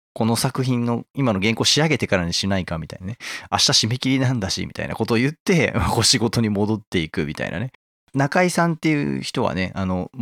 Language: Japanese